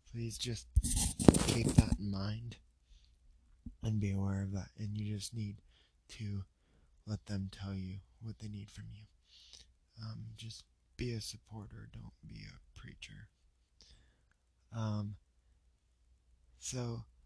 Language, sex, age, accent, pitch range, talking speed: English, male, 20-39, American, 90-120 Hz, 125 wpm